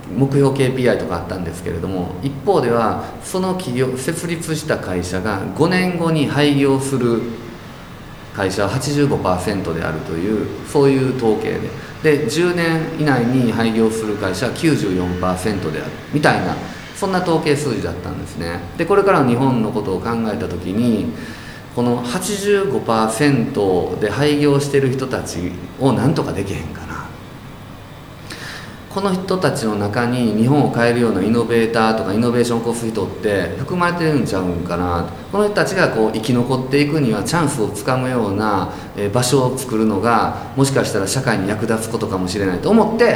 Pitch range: 100-145 Hz